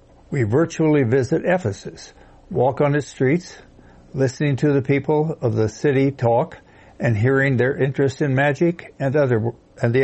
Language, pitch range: English, 115-140 Hz